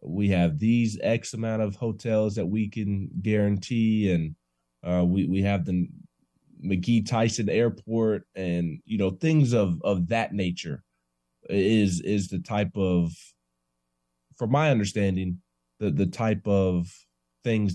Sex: male